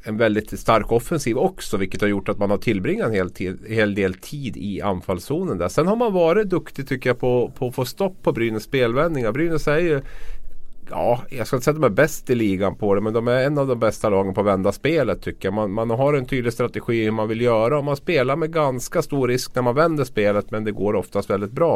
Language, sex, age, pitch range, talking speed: Swedish, male, 30-49, 100-135 Hz, 255 wpm